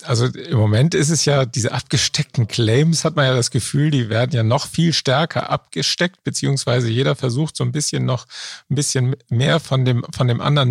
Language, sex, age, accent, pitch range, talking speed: German, male, 50-69, German, 115-140 Hz, 200 wpm